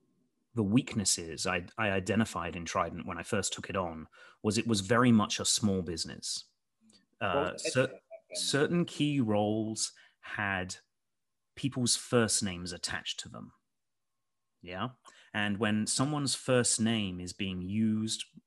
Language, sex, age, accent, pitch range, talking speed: English, male, 30-49, British, 95-120 Hz, 135 wpm